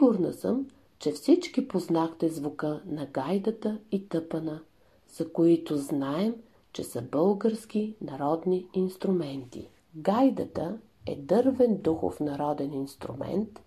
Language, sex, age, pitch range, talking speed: Bulgarian, female, 50-69, 150-225 Hz, 105 wpm